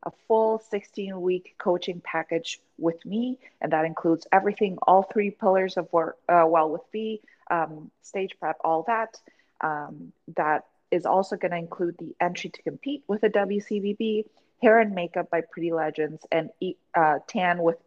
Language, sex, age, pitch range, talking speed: English, female, 30-49, 160-205 Hz, 170 wpm